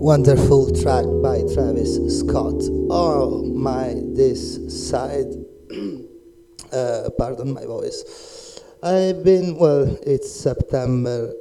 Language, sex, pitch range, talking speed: Italian, male, 125-195 Hz, 95 wpm